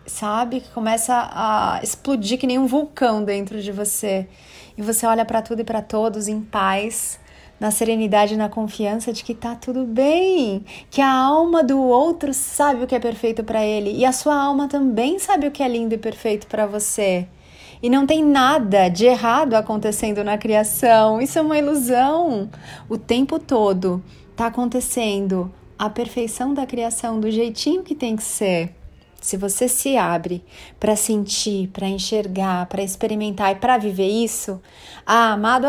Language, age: Portuguese, 30-49